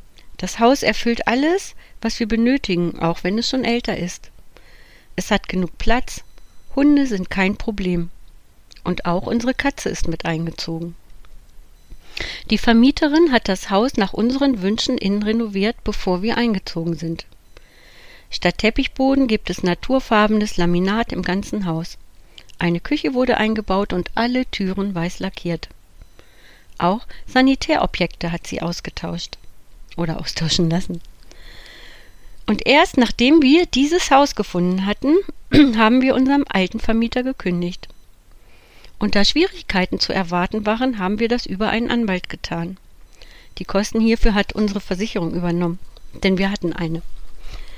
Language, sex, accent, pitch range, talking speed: German, female, German, 175-240 Hz, 135 wpm